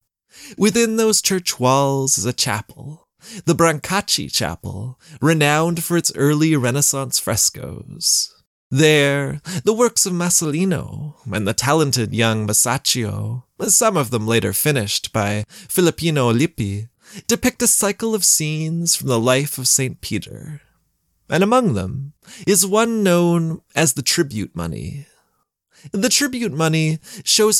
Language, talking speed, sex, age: English, 130 wpm, male, 20-39